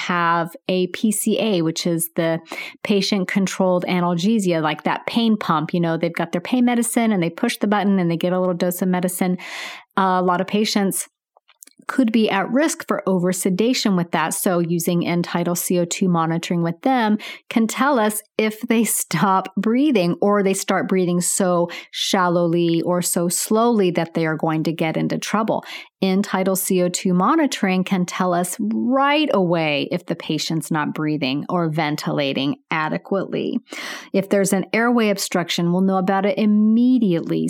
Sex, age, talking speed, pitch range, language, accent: female, 30-49, 170 wpm, 175-215 Hz, English, American